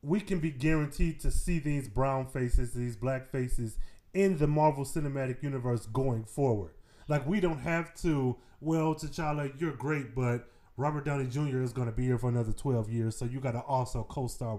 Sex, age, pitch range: male, 20-39, 125-160 Hz